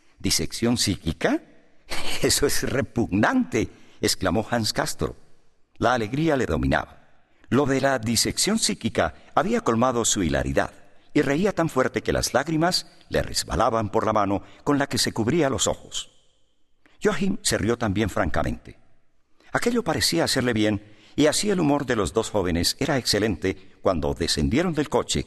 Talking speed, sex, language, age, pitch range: 150 wpm, male, English, 50-69, 95-145 Hz